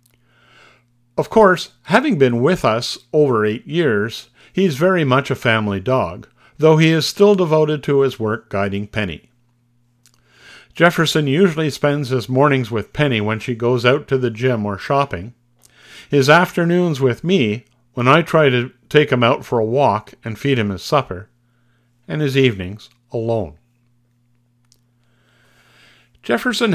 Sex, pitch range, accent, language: male, 120-145 Hz, American, English